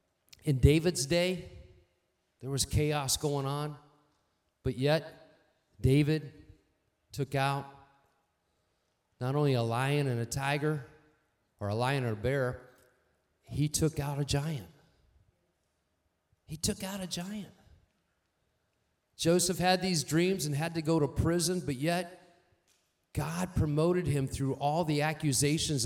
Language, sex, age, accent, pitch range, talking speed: English, male, 40-59, American, 115-165 Hz, 130 wpm